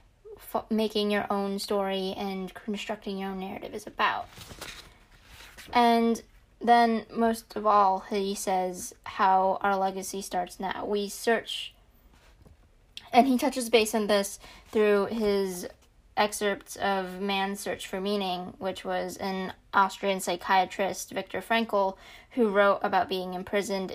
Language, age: English, 20-39